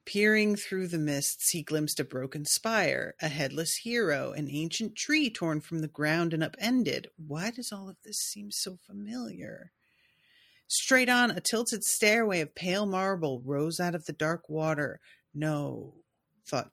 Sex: female